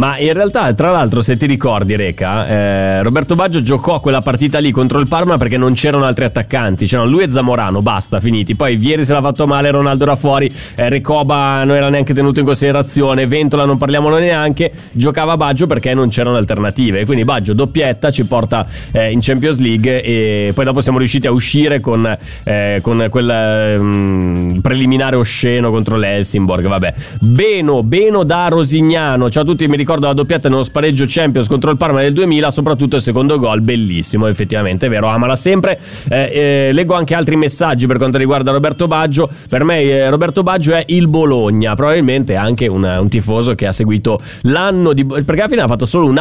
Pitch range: 115-145 Hz